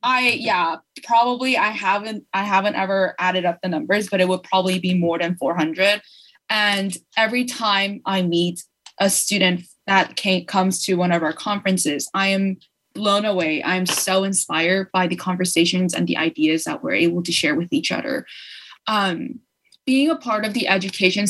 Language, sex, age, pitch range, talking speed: English, female, 20-39, 180-205 Hz, 185 wpm